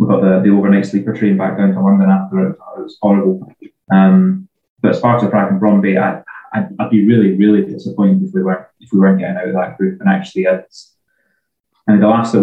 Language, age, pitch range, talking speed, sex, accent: English, 20-39, 100-135 Hz, 230 wpm, male, British